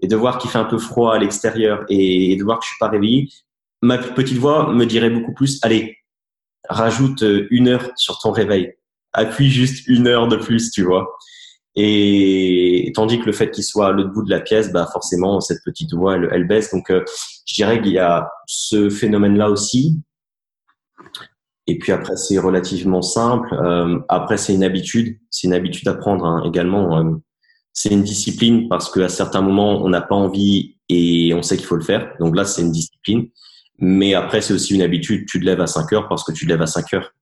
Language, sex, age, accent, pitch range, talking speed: French, male, 20-39, French, 90-115 Hz, 215 wpm